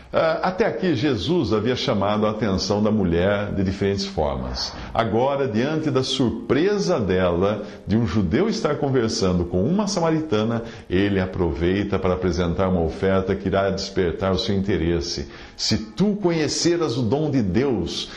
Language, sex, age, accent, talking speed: English, male, 50-69, Brazilian, 145 wpm